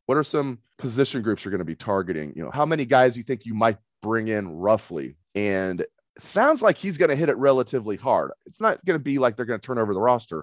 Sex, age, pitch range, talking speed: male, 30-49, 95-125 Hz, 265 wpm